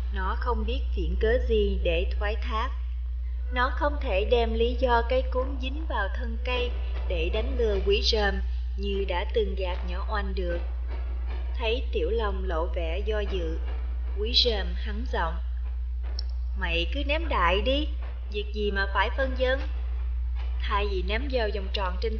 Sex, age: female, 30-49